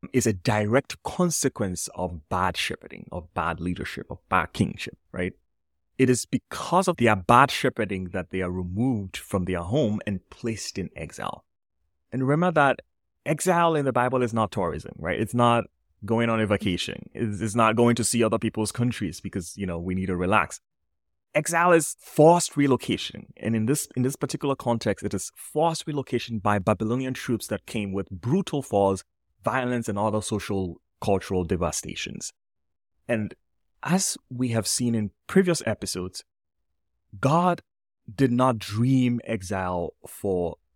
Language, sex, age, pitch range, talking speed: English, male, 30-49, 90-130 Hz, 155 wpm